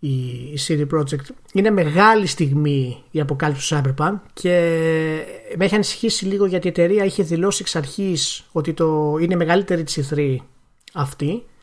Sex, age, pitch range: male, 30-49, 145-195 Hz